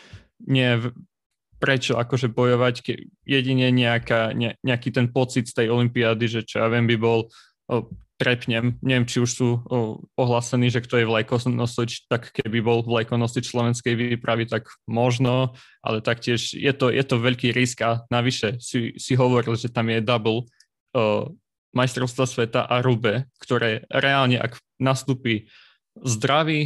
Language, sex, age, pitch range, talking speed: Slovak, male, 20-39, 115-130 Hz, 155 wpm